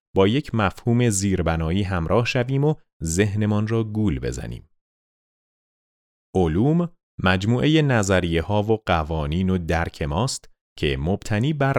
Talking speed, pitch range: 115 wpm, 80-115 Hz